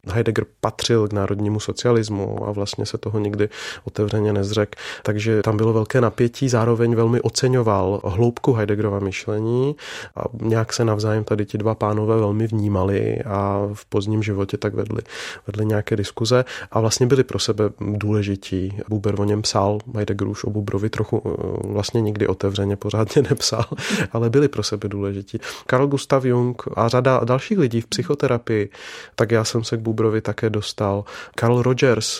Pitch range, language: 105-120 Hz, Czech